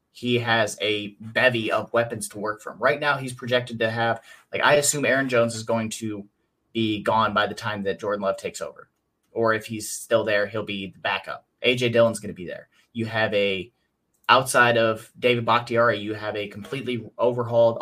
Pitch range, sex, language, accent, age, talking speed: 110-125 Hz, male, English, American, 30-49, 200 wpm